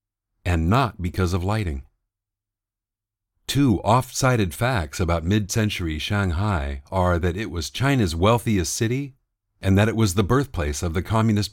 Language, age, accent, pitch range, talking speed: English, 50-69, American, 90-115 Hz, 145 wpm